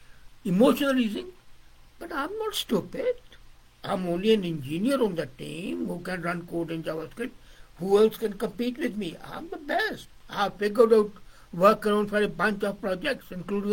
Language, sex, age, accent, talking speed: English, male, 60-79, Indian, 160 wpm